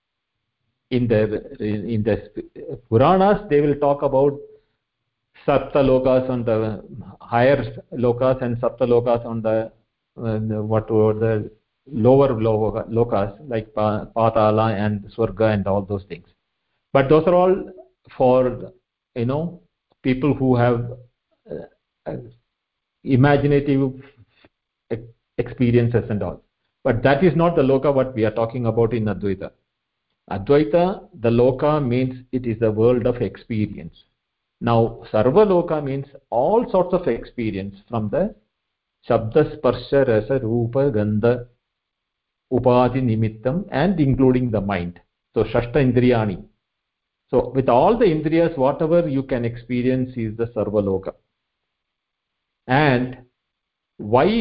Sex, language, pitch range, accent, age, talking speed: male, English, 110-140 Hz, Indian, 50-69, 120 wpm